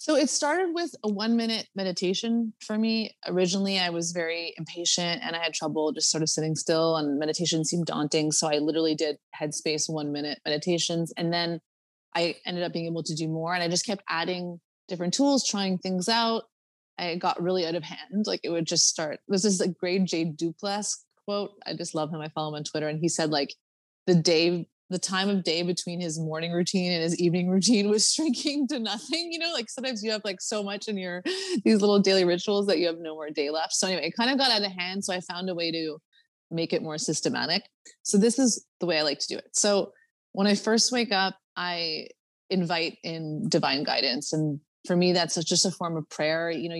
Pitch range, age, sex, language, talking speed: 165-205 Hz, 20-39, female, English, 230 wpm